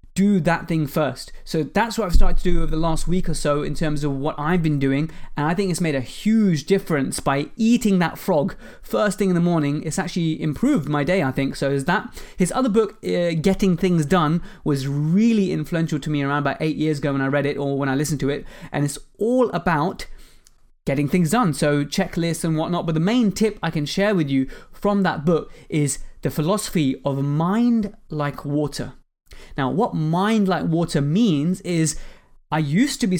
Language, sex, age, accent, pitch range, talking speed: English, male, 20-39, British, 150-185 Hz, 215 wpm